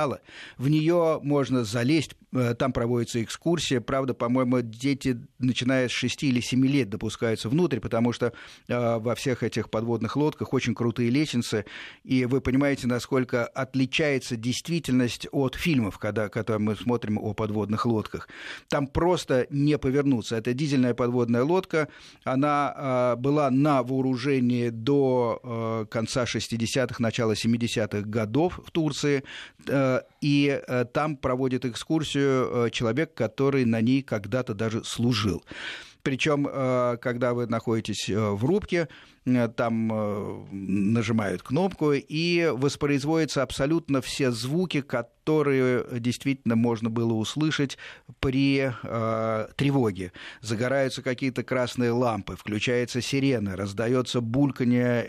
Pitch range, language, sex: 115-140 Hz, Russian, male